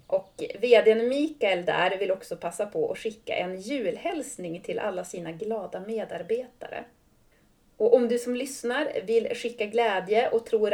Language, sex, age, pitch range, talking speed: Swedish, female, 30-49, 195-285 Hz, 150 wpm